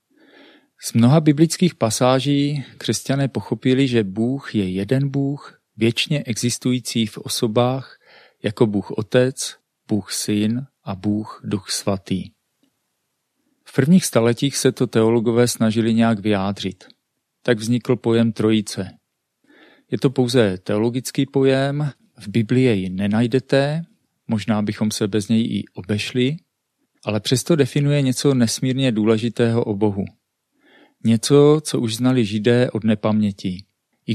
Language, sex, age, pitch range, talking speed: Czech, male, 40-59, 105-130 Hz, 120 wpm